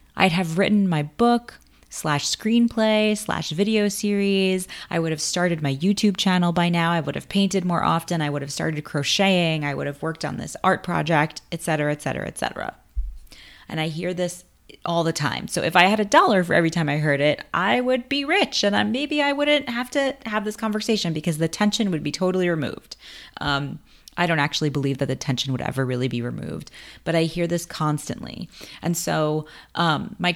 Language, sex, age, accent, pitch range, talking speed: English, female, 20-39, American, 150-190 Hz, 205 wpm